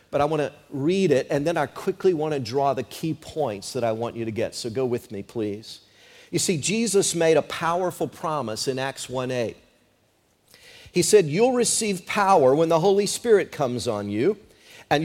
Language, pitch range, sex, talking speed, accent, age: English, 155-230 Hz, male, 200 wpm, American, 50-69